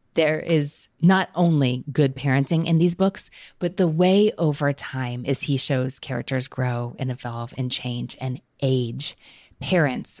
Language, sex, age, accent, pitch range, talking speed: English, female, 20-39, American, 130-155 Hz, 155 wpm